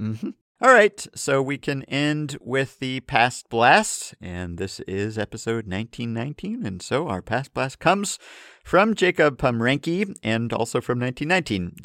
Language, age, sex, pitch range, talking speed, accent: English, 50-69, male, 105-140 Hz, 145 wpm, American